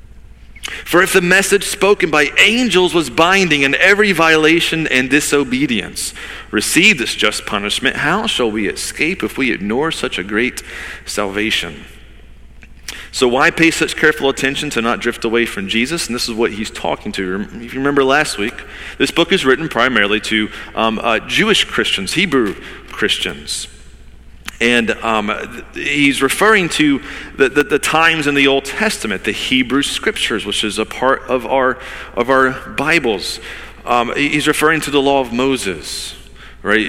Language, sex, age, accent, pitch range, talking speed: English, male, 40-59, American, 110-150 Hz, 160 wpm